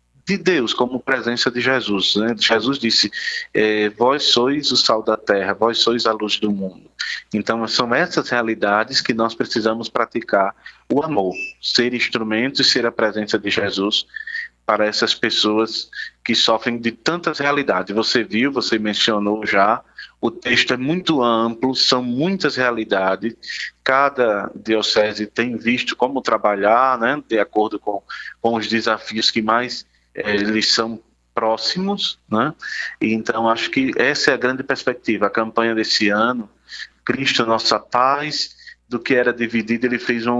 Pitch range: 110-135 Hz